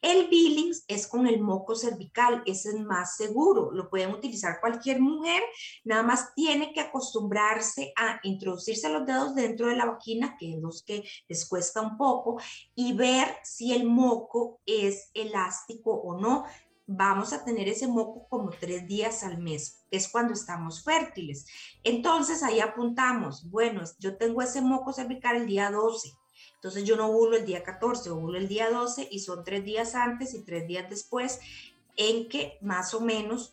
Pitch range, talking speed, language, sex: 190-240 Hz, 175 wpm, Spanish, female